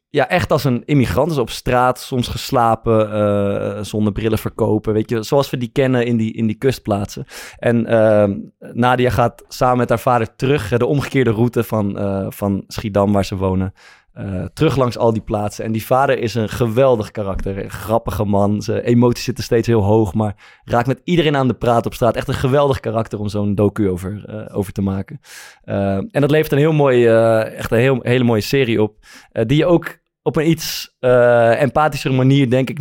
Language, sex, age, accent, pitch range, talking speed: Dutch, male, 20-39, Dutch, 105-125 Hz, 210 wpm